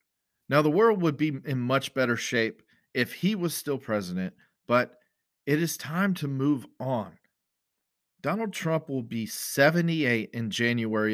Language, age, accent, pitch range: English, 40-59, American, 115-160 Hz